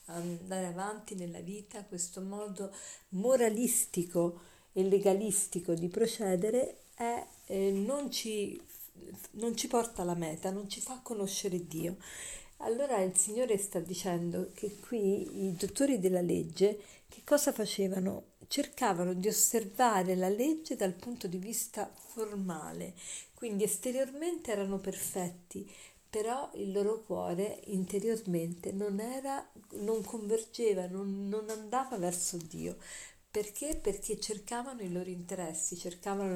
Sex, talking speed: female, 120 wpm